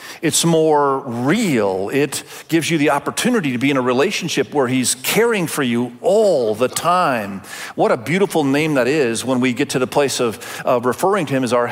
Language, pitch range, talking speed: English, 130-185 Hz, 205 wpm